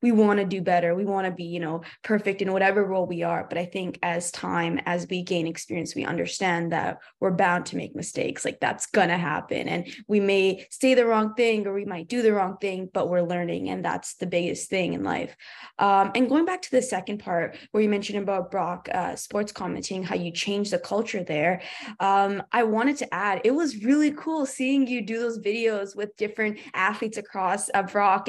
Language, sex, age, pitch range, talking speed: English, female, 20-39, 190-230 Hz, 225 wpm